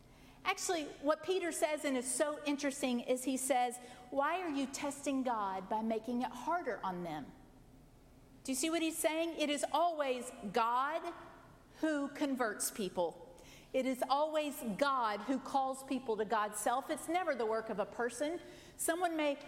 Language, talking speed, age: English, 165 wpm, 50-69